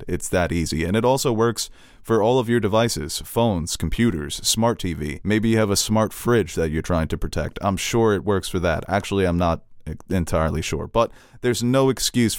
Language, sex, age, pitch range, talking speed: English, male, 30-49, 85-115 Hz, 205 wpm